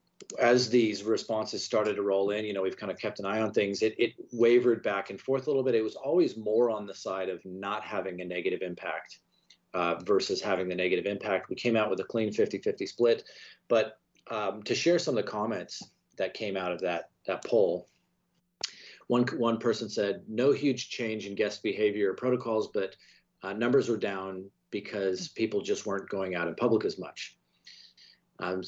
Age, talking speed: 30-49, 200 wpm